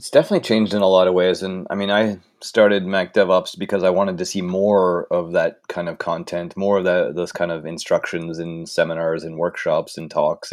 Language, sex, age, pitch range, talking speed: English, male, 30-49, 90-120 Hz, 220 wpm